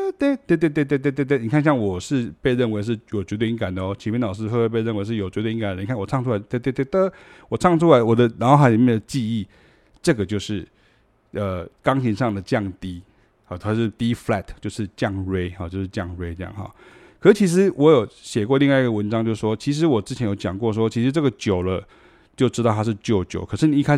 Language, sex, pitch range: Chinese, male, 105-140 Hz